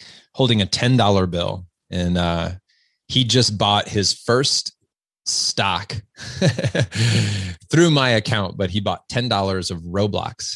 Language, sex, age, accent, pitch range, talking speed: English, male, 30-49, American, 90-115 Hz, 130 wpm